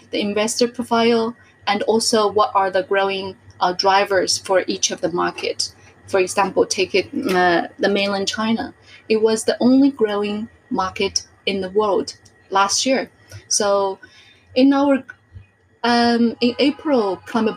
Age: 30-49